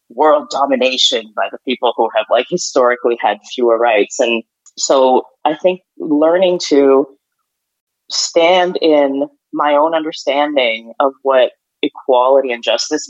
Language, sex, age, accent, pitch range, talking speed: English, female, 20-39, American, 130-175 Hz, 130 wpm